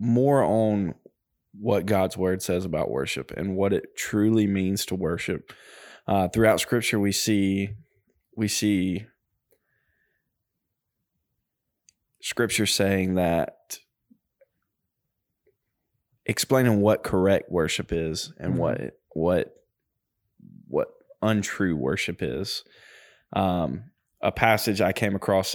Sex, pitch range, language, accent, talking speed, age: male, 90-110 Hz, English, American, 100 wpm, 20-39